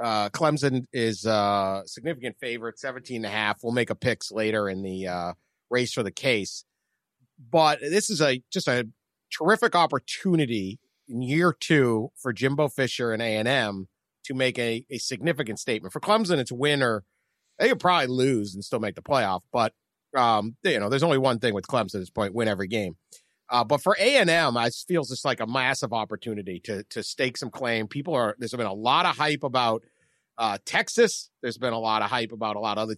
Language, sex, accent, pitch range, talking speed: English, male, American, 110-145 Hz, 205 wpm